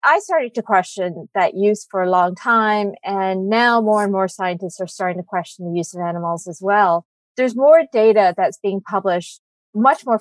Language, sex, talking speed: English, female, 200 wpm